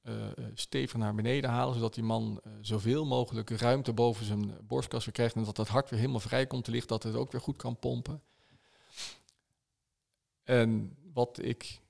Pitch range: 110-125 Hz